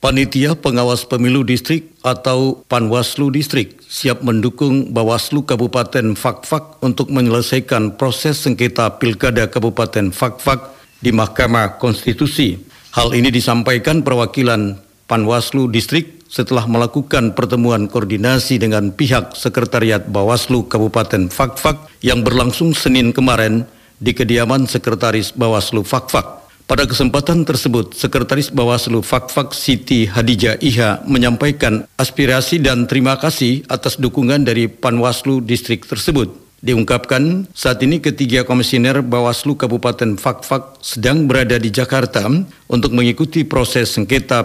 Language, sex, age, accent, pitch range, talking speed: Indonesian, male, 50-69, native, 120-135 Hz, 110 wpm